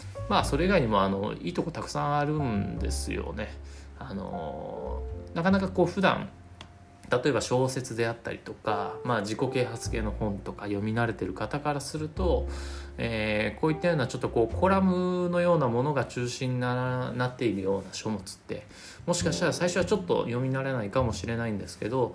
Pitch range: 95-150 Hz